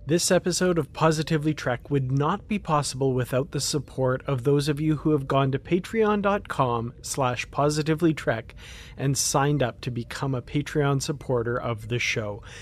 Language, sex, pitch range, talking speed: English, male, 130-170 Hz, 160 wpm